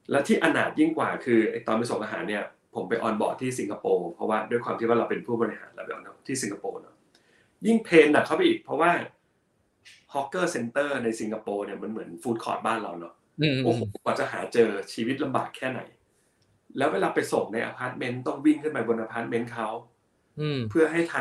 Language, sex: Thai, male